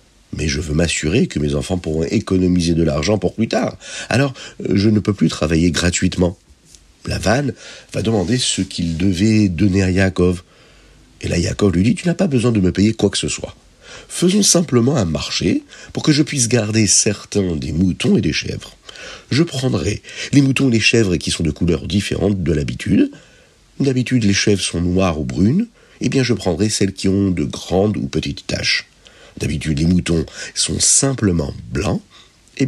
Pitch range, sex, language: 85-120 Hz, male, French